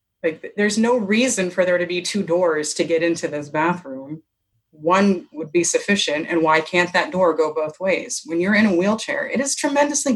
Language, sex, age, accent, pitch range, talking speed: English, female, 30-49, American, 155-215 Hz, 200 wpm